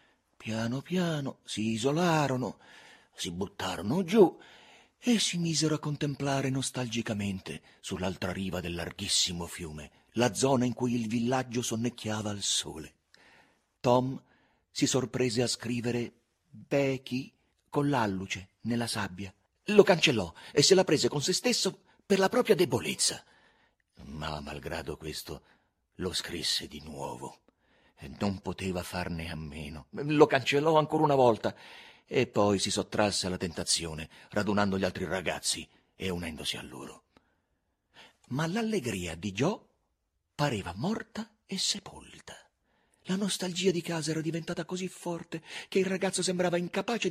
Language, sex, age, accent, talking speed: Italian, male, 40-59, native, 130 wpm